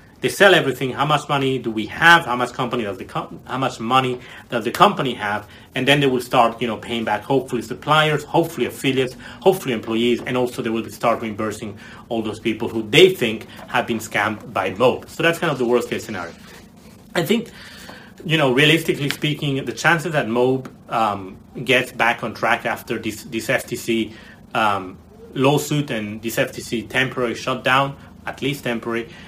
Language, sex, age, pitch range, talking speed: English, male, 30-49, 115-150 Hz, 185 wpm